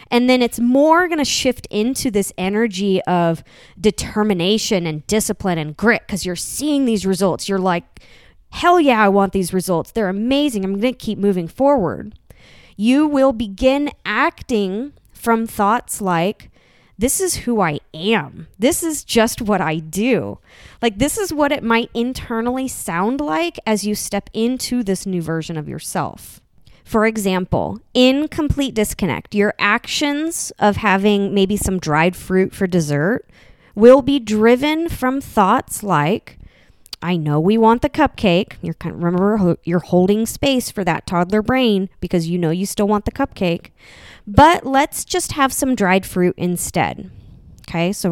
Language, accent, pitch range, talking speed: English, American, 180-245 Hz, 160 wpm